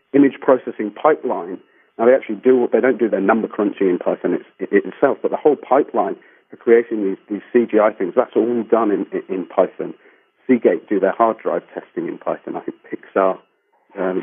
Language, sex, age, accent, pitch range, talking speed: English, male, 40-59, British, 105-150 Hz, 200 wpm